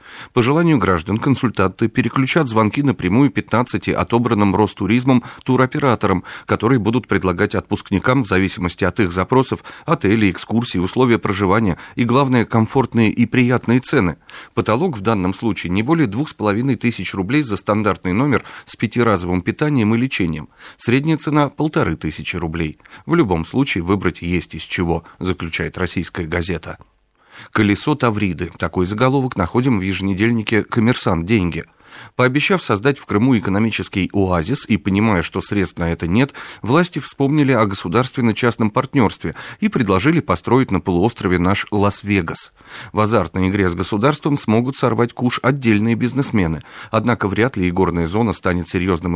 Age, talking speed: 40-59, 140 wpm